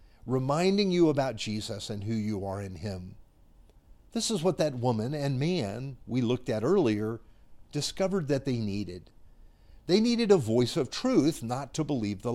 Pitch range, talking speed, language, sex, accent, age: 110-160 Hz, 170 wpm, English, male, American, 50-69